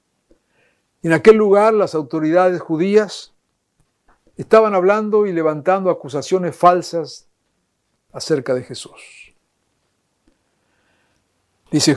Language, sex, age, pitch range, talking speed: Spanish, male, 60-79, 135-170 Hz, 80 wpm